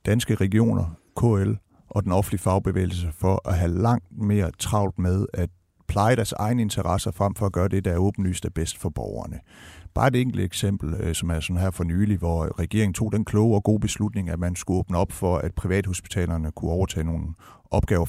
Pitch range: 90-110 Hz